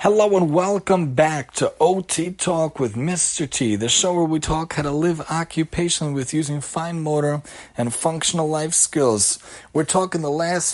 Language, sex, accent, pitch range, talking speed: English, male, American, 145-170 Hz, 175 wpm